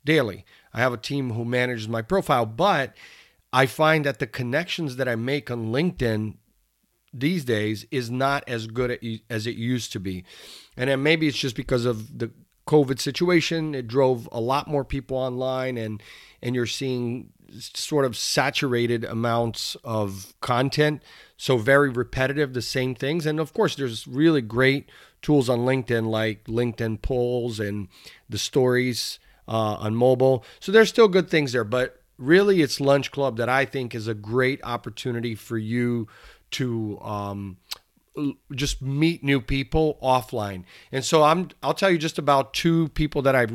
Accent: American